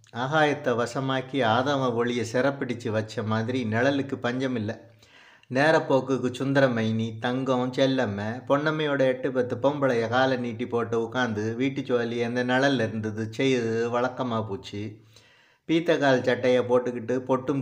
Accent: native